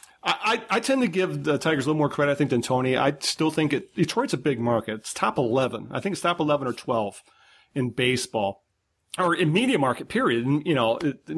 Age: 40-59